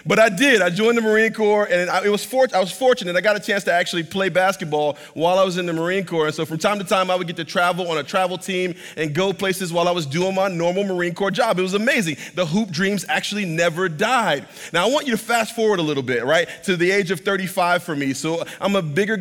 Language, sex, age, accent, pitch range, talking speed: English, male, 30-49, American, 165-205 Hz, 270 wpm